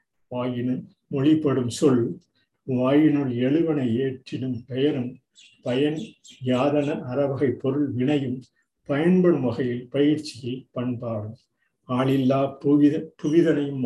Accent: native